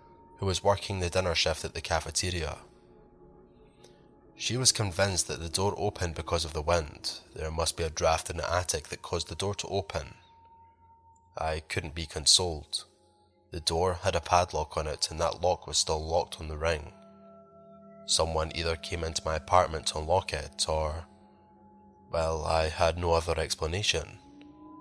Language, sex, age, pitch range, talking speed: English, male, 20-39, 80-100 Hz, 170 wpm